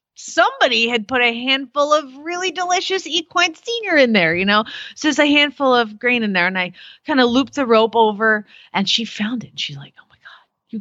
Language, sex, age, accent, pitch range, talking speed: English, female, 30-49, American, 205-295 Hz, 230 wpm